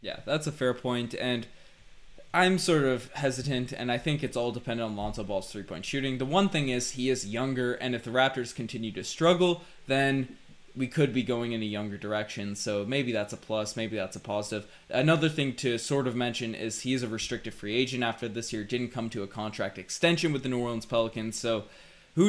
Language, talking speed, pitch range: English, 220 wpm, 115-145 Hz